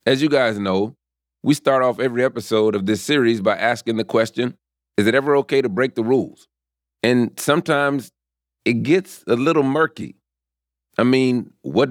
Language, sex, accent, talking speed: English, male, American, 170 wpm